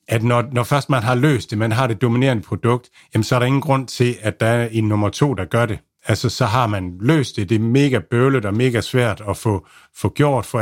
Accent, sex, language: native, male, Danish